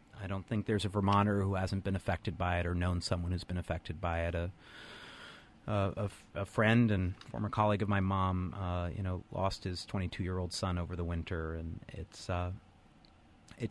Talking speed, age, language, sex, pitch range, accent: 200 wpm, 30-49, English, male, 90-105 Hz, American